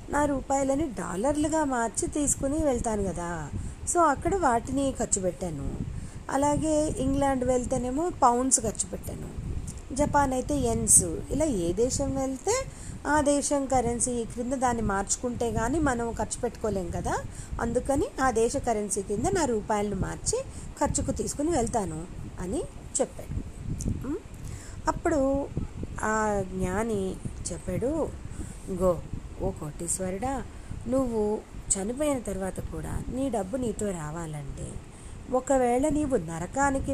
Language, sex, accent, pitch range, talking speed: Telugu, female, native, 190-265 Hz, 105 wpm